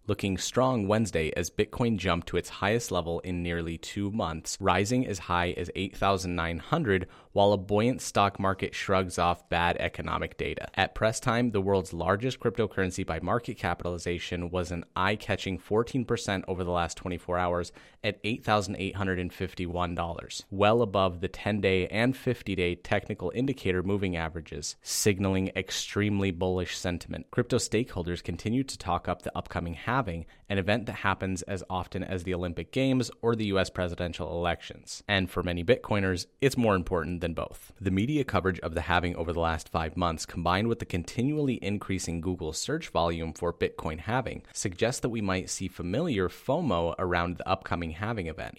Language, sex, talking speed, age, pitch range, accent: English, male, 160 wpm, 30-49, 85-105 Hz, American